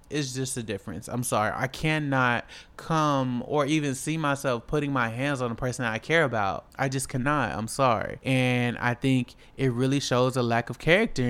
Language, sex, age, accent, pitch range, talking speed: English, male, 20-39, American, 125-165 Hz, 200 wpm